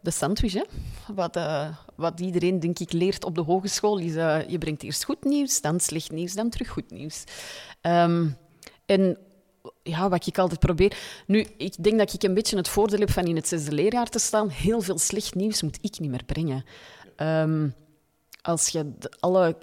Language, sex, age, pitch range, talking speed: Dutch, female, 30-49, 155-200 Hz, 200 wpm